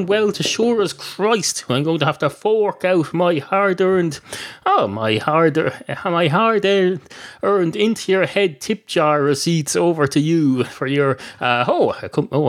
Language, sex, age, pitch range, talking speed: English, male, 30-49, 120-175 Hz, 175 wpm